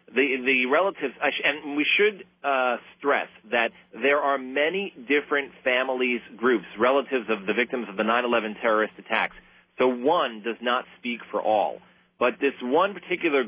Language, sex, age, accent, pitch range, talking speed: English, male, 40-59, American, 115-135 Hz, 155 wpm